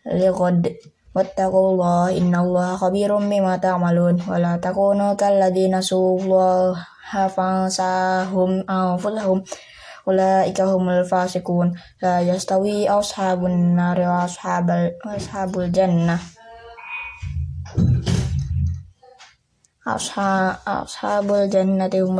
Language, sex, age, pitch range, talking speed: Indonesian, female, 20-39, 180-190 Hz, 70 wpm